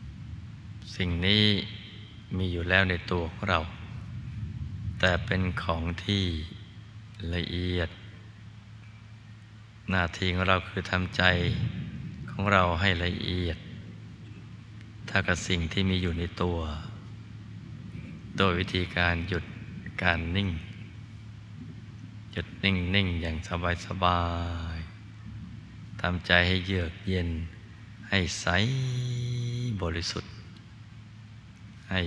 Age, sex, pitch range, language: 20-39, male, 90-110 Hz, Thai